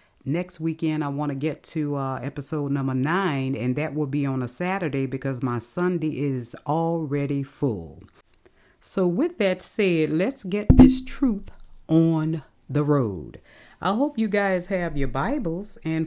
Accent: American